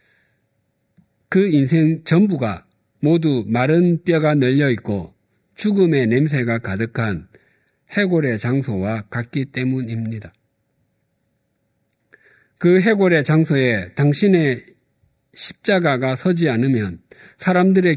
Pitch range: 110-155 Hz